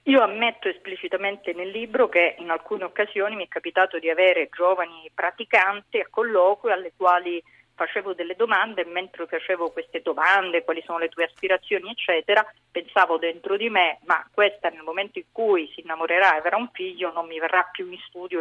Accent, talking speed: native, 185 wpm